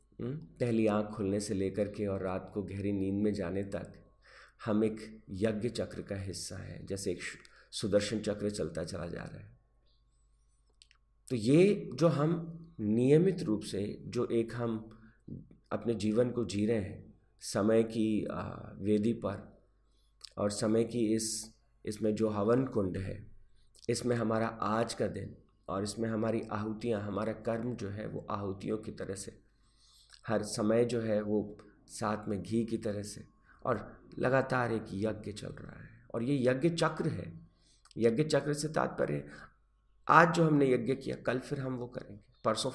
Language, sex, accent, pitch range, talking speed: Hindi, male, native, 105-120 Hz, 160 wpm